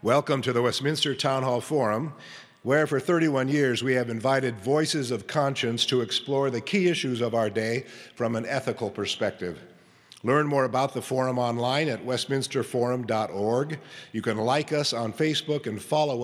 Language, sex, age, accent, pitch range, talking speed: English, male, 50-69, American, 115-140 Hz, 165 wpm